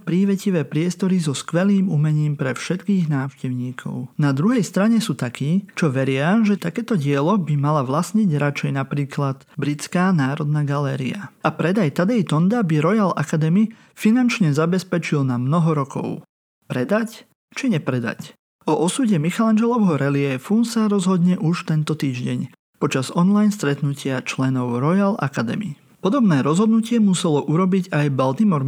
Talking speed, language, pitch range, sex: 130 wpm, Slovak, 145-195 Hz, male